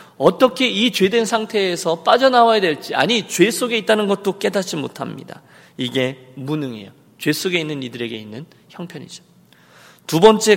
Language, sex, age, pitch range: Korean, male, 40-59, 135-200 Hz